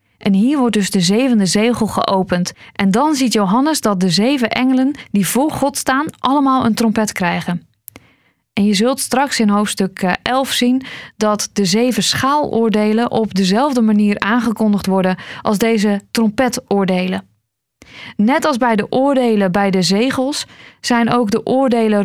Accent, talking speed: Dutch, 150 wpm